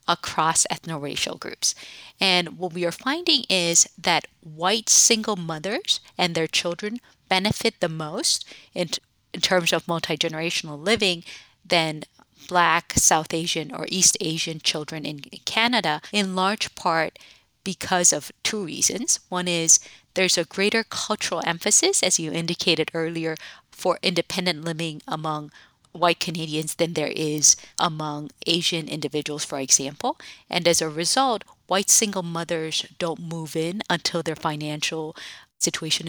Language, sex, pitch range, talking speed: English, female, 155-185 Hz, 135 wpm